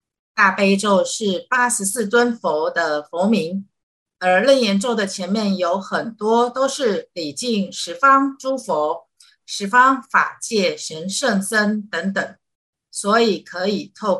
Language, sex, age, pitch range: Chinese, female, 50-69, 180-235 Hz